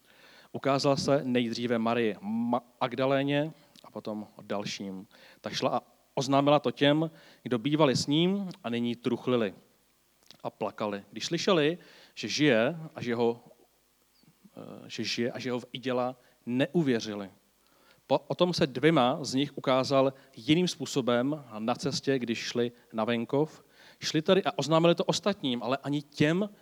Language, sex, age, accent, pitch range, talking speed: Czech, male, 40-59, native, 120-155 Hz, 140 wpm